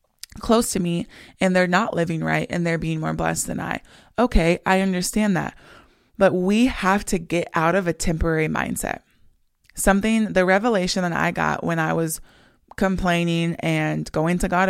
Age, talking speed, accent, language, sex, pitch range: 20-39, 175 wpm, American, English, female, 160-190 Hz